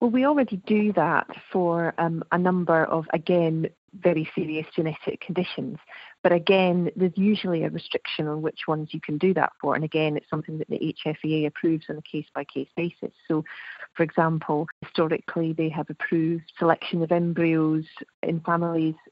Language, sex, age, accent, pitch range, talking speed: English, female, 30-49, British, 160-180 Hz, 165 wpm